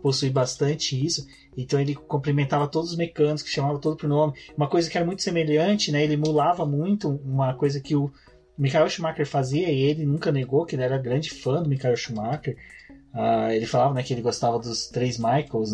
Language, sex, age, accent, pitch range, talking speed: Portuguese, male, 30-49, Brazilian, 130-175 Hz, 200 wpm